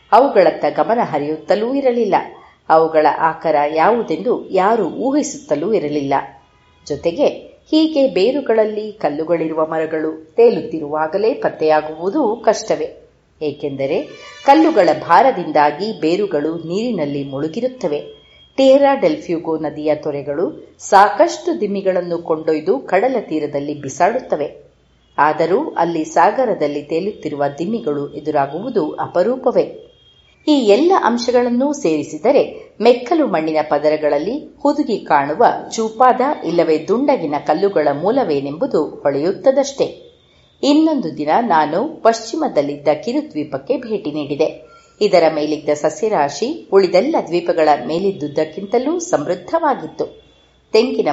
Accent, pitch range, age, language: native, 150-250 Hz, 30-49, Kannada